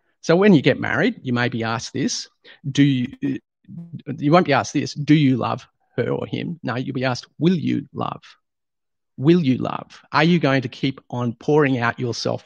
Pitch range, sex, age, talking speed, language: 130-150 Hz, male, 40-59, 200 wpm, English